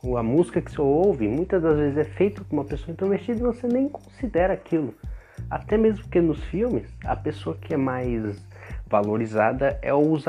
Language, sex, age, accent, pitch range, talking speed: Portuguese, male, 30-49, Brazilian, 100-150 Hz, 185 wpm